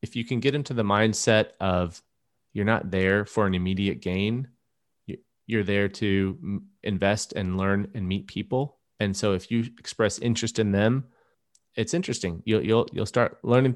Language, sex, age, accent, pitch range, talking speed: English, male, 30-49, American, 100-115 Hz, 170 wpm